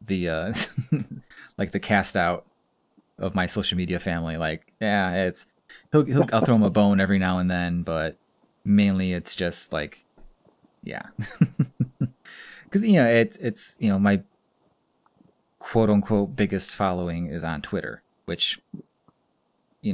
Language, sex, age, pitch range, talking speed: English, male, 30-49, 90-105 Hz, 145 wpm